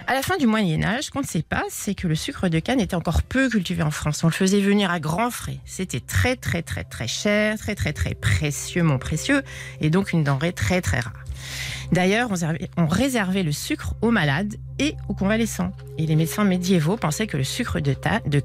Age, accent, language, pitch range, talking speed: 40-59, French, French, 135-195 Hz, 220 wpm